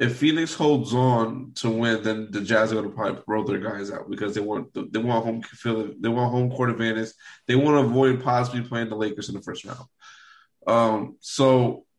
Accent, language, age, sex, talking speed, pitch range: American, English, 20-39, male, 215 wpm, 110-125 Hz